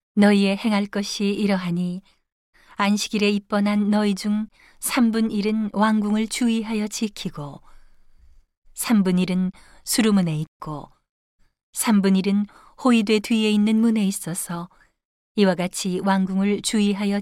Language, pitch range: Korean, 185-210 Hz